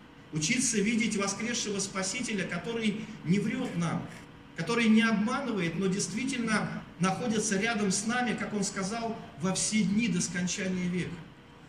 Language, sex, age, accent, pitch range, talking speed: Russian, male, 40-59, native, 175-220 Hz, 135 wpm